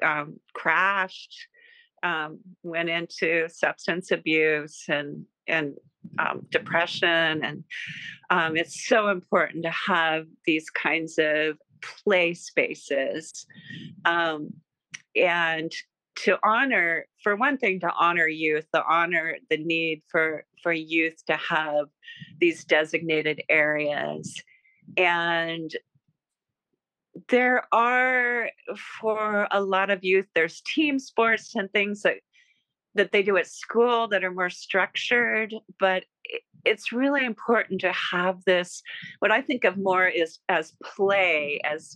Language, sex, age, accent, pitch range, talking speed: English, female, 40-59, American, 165-215 Hz, 120 wpm